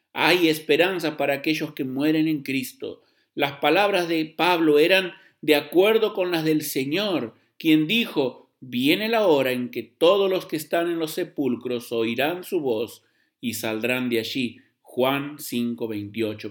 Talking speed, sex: 155 wpm, male